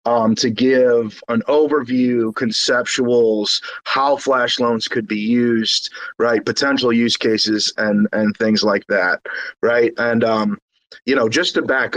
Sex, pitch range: male, 115-130 Hz